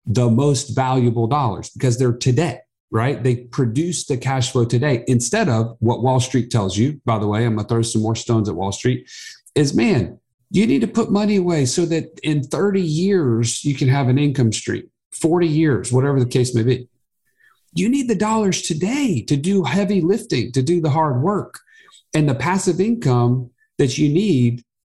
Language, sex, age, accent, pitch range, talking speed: English, male, 50-69, American, 120-165 Hz, 195 wpm